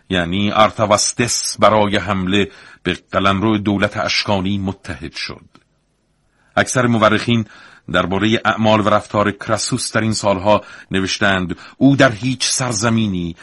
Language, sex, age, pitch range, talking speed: Persian, male, 50-69, 95-110 Hz, 110 wpm